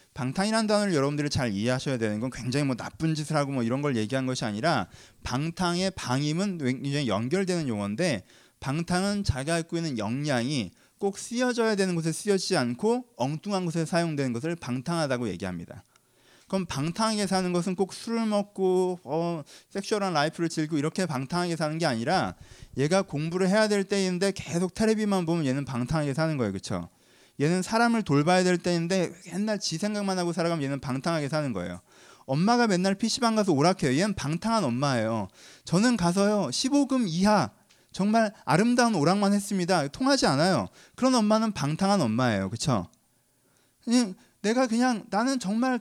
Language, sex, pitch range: Korean, male, 140-205 Hz